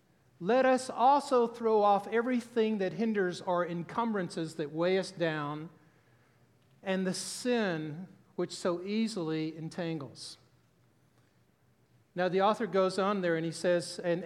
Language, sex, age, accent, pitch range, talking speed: English, male, 50-69, American, 165-220 Hz, 130 wpm